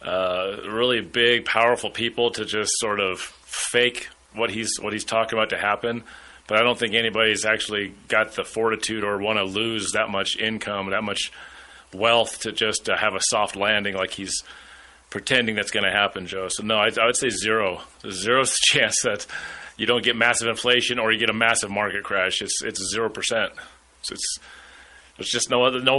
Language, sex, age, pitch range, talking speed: English, male, 30-49, 105-125 Hz, 195 wpm